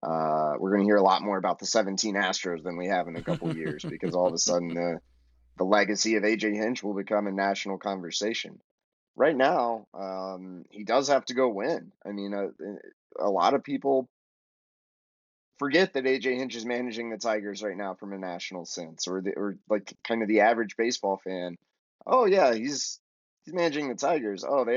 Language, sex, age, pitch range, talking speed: English, male, 20-39, 95-115 Hz, 210 wpm